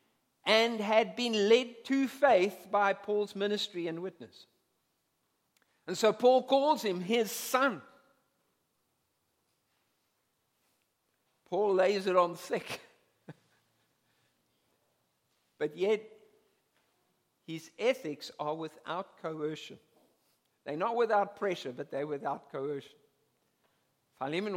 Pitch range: 160-230 Hz